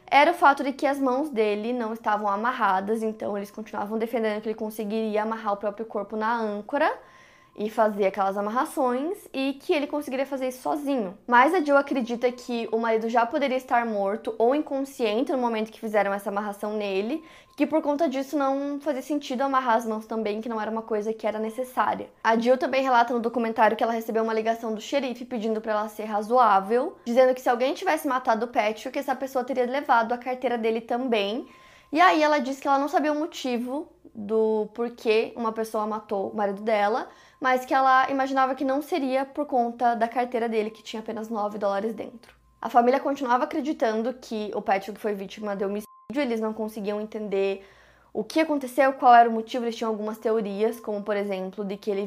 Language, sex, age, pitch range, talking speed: Portuguese, female, 20-39, 215-265 Hz, 205 wpm